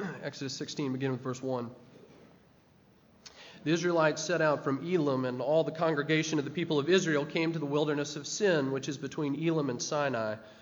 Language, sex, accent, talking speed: English, male, American, 185 wpm